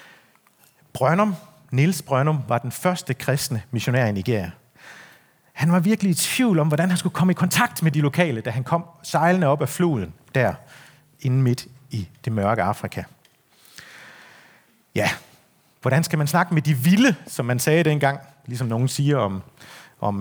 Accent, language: native, Danish